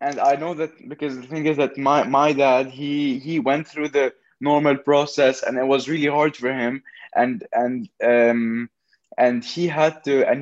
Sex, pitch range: male, 125-150 Hz